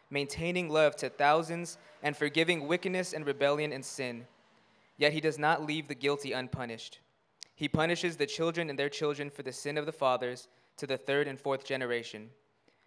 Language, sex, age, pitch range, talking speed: English, male, 20-39, 130-160 Hz, 175 wpm